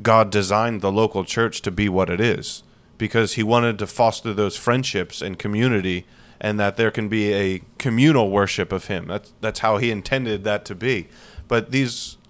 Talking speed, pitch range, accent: 190 wpm, 100-120 Hz, American